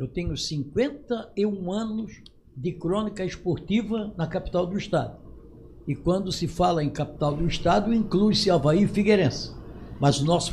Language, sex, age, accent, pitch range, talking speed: Portuguese, male, 60-79, Brazilian, 180-255 Hz, 150 wpm